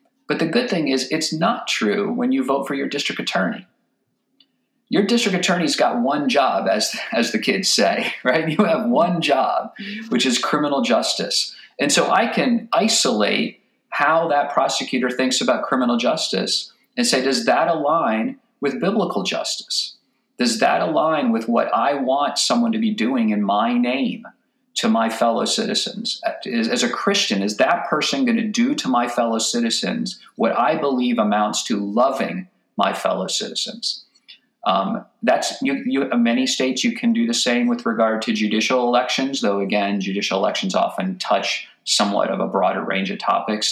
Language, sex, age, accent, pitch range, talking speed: English, male, 50-69, American, 155-240 Hz, 170 wpm